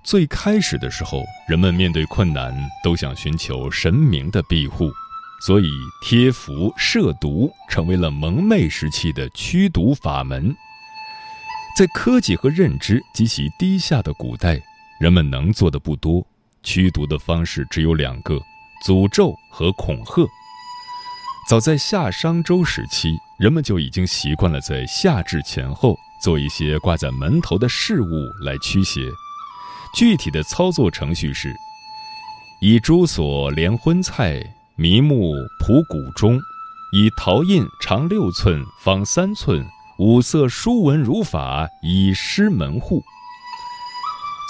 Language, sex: Chinese, male